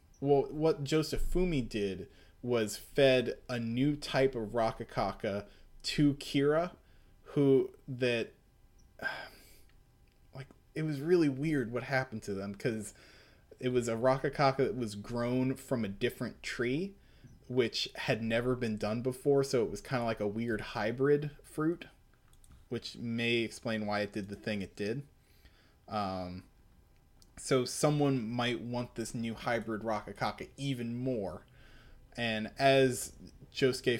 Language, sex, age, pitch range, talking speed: English, male, 20-39, 110-135 Hz, 135 wpm